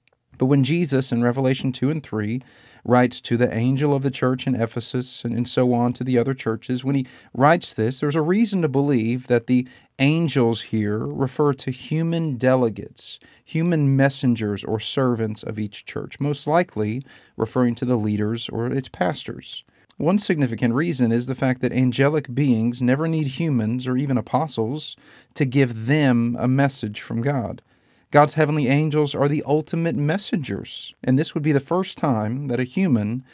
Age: 40-59